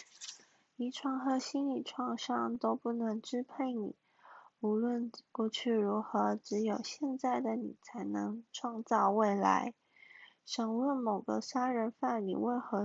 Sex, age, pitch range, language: female, 20-39, 215-250 Hz, Chinese